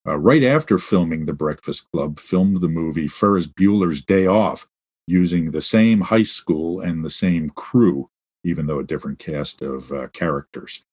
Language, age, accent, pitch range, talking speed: English, 50-69, American, 80-115 Hz, 170 wpm